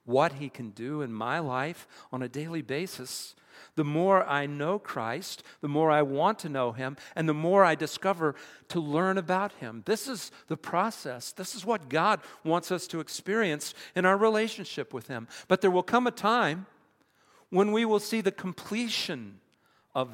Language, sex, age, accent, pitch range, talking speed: English, male, 50-69, American, 150-210 Hz, 185 wpm